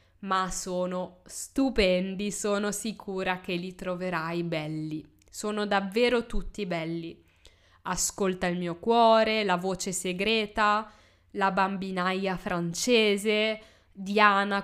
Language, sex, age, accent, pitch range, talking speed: Italian, female, 20-39, native, 180-210 Hz, 100 wpm